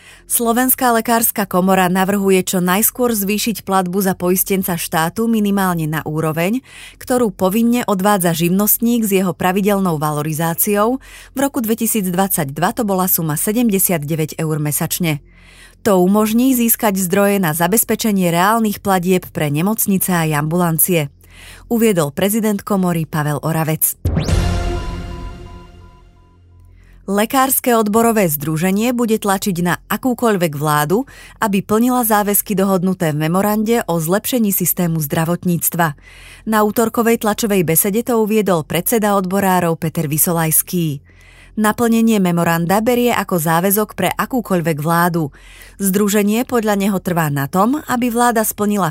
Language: Slovak